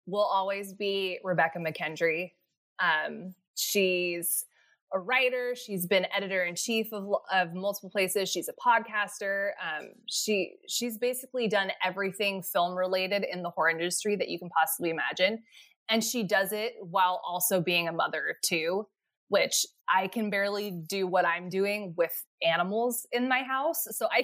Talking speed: 150 wpm